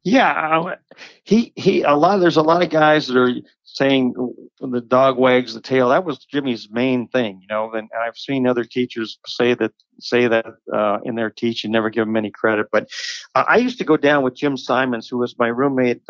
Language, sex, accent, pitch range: English, male, American, 115-135 Hz